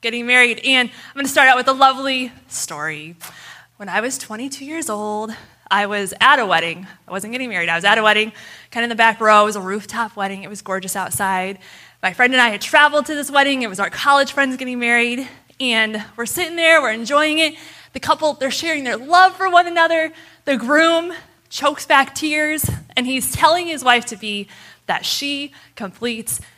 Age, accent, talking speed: 20-39, American, 210 wpm